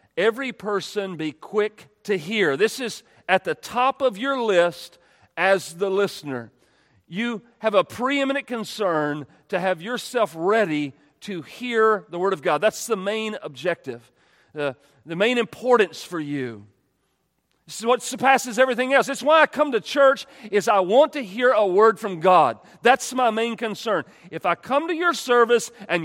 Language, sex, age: English, male, 40-59